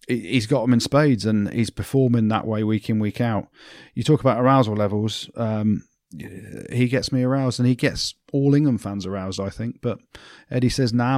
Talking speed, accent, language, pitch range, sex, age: 200 wpm, British, English, 110-130 Hz, male, 30-49